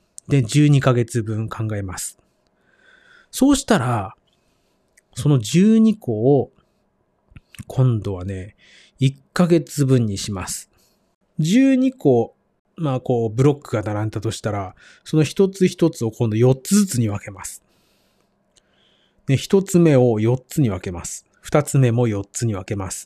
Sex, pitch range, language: male, 110-150 Hz, Japanese